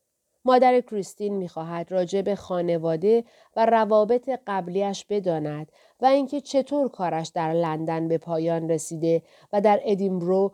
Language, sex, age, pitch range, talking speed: Persian, female, 30-49, 170-215 Hz, 120 wpm